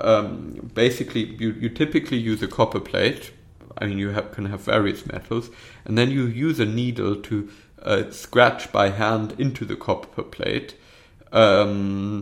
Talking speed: 160 wpm